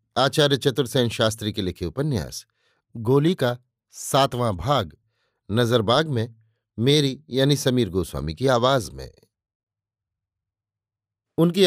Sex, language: male, Hindi